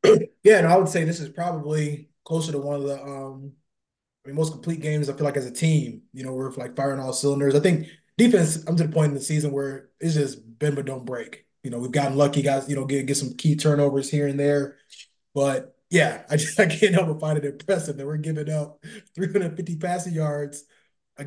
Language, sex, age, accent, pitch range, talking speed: English, male, 20-39, American, 135-155 Hz, 235 wpm